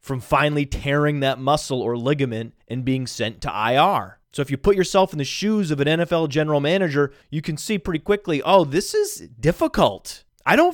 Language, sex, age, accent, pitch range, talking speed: English, male, 30-49, American, 130-170 Hz, 200 wpm